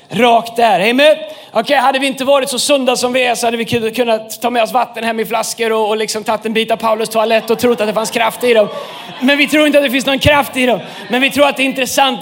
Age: 30-49